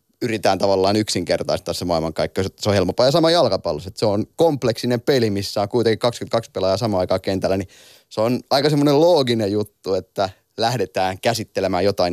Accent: native